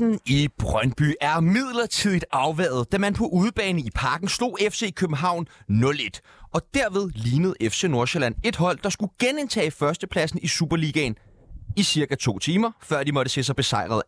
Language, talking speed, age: Danish, 160 wpm, 30-49